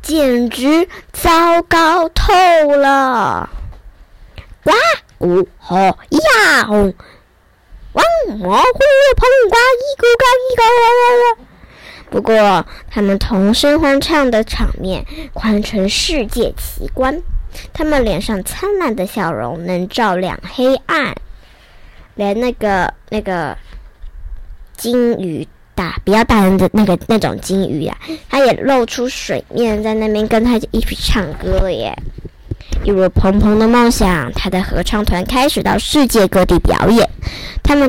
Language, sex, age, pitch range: Chinese, male, 10-29, 185-275 Hz